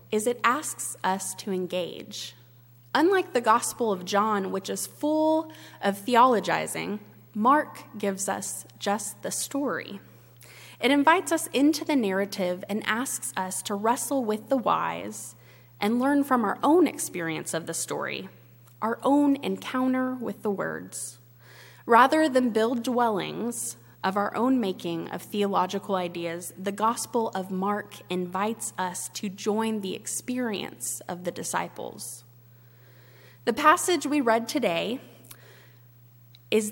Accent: American